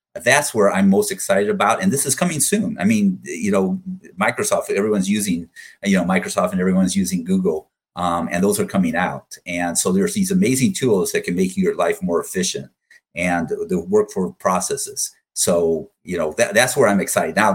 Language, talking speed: English, 195 wpm